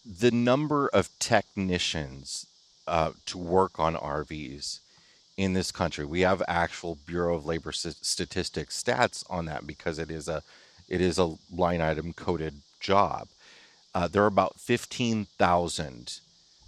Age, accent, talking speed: 30-49, American, 135 wpm